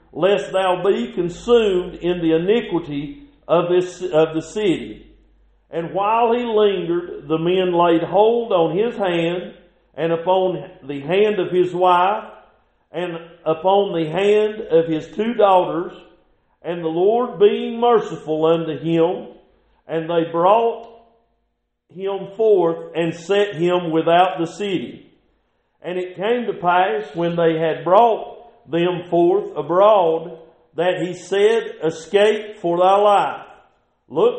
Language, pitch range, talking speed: English, 170-215 Hz, 135 wpm